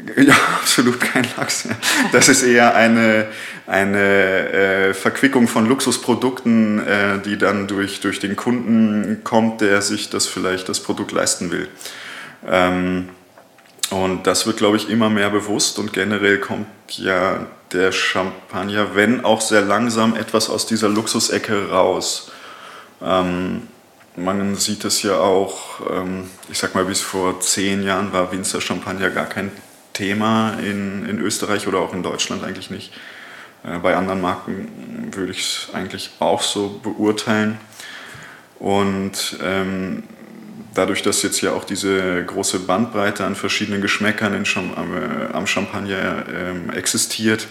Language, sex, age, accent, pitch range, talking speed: German, male, 20-39, German, 95-110 Hz, 145 wpm